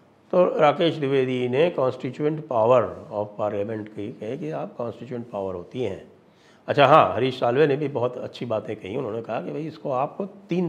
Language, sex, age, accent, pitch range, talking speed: English, male, 60-79, Indian, 115-155 Hz, 175 wpm